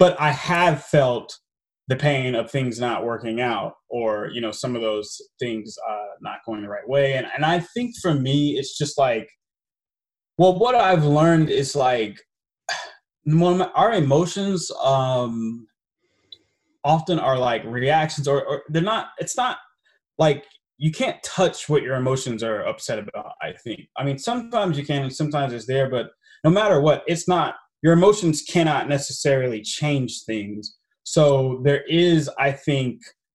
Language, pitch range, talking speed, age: English, 120-160 Hz, 160 wpm, 20-39